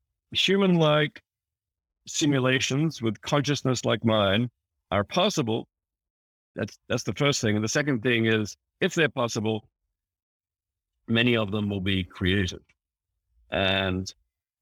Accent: American